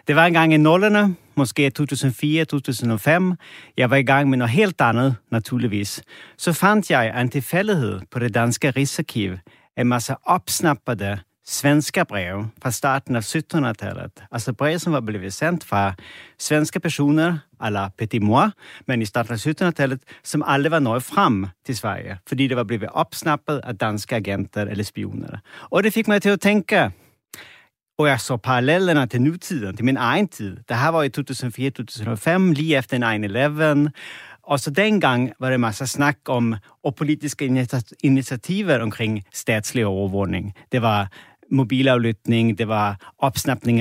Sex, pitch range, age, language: male, 115-150 Hz, 40-59, Danish